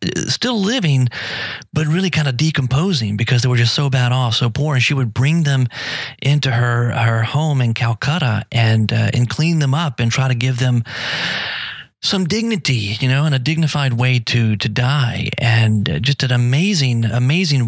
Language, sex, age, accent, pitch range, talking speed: English, male, 40-59, American, 120-155 Hz, 185 wpm